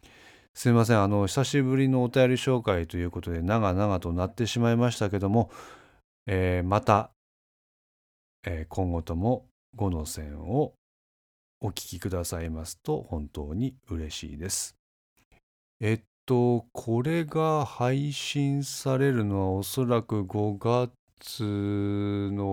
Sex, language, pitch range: male, Japanese, 90-120 Hz